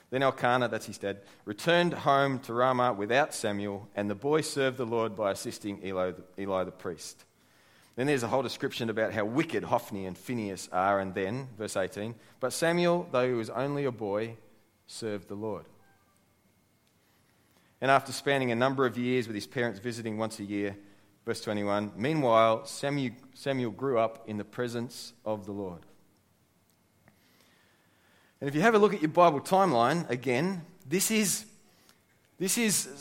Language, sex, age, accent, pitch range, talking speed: English, male, 30-49, Australian, 110-155 Hz, 165 wpm